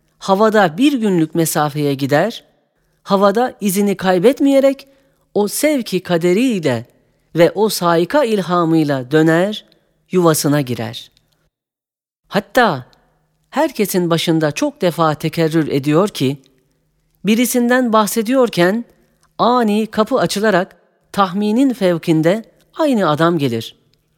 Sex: female